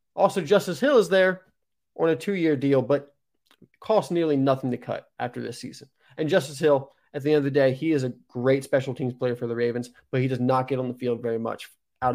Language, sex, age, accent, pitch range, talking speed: English, male, 30-49, American, 130-170 Hz, 235 wpm